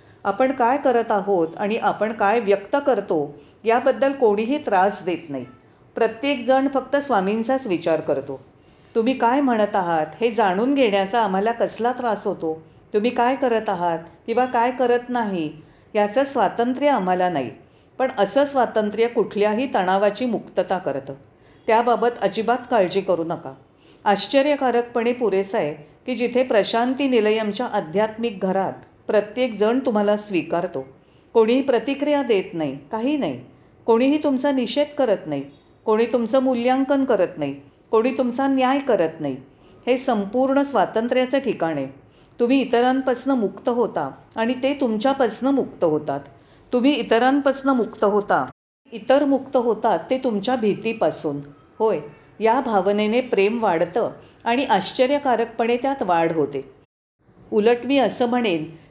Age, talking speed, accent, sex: 40-59, 115 wpm, native, female